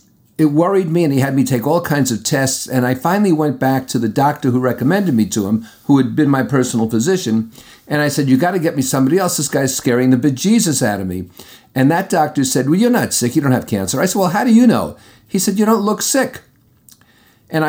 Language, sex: English, male